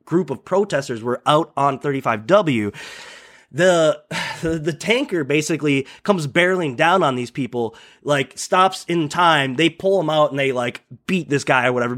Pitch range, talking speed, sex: 135-185 Hz, 165 wpm, male